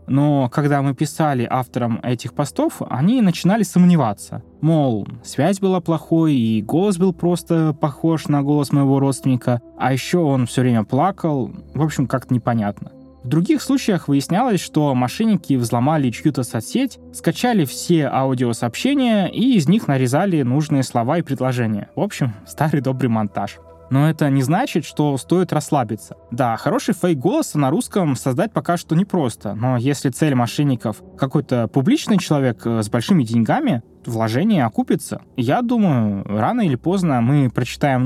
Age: 20-39